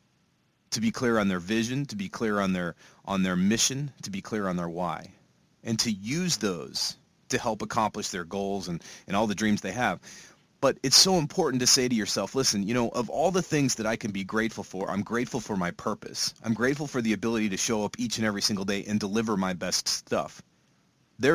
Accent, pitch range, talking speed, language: American, 105-130 Hz, 230 wpm, English